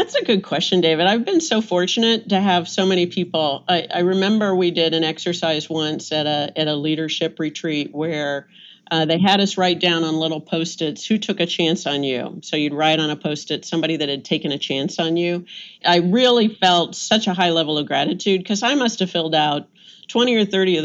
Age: 50-69